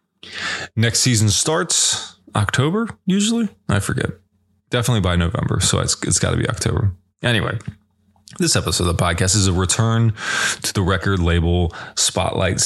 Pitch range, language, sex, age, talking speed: 90-115 Hz, English, male, 20-39, 145 wpm